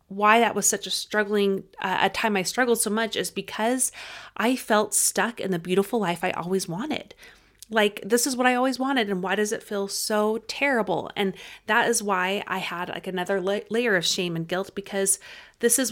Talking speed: 205 wpm